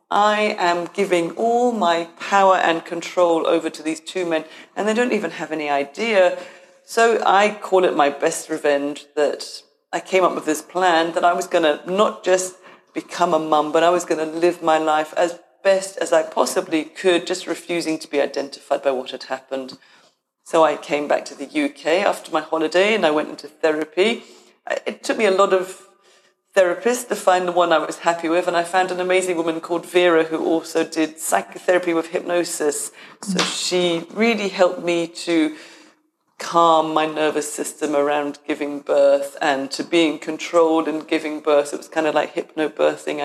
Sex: female